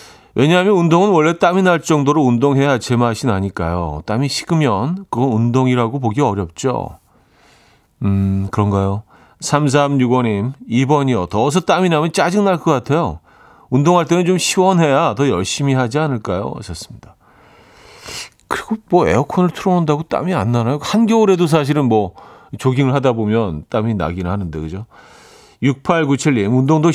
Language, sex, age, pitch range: Korean, male, 40-59, 110-165 Hz